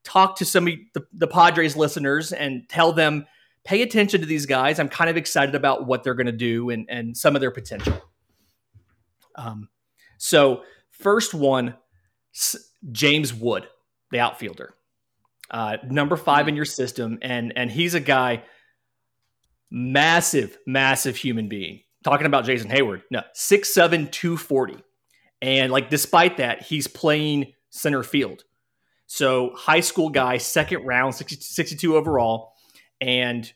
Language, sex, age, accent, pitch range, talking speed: English, male, 30-49, American, 120-160 Hz, 145 wpm